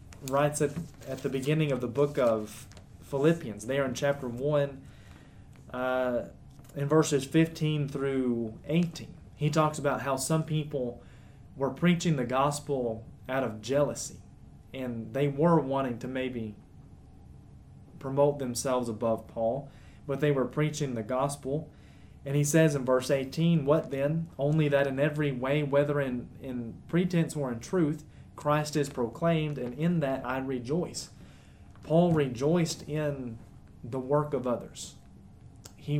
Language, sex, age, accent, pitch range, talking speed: English, male, 20-39, American, 120-145 Hz, 140 wpm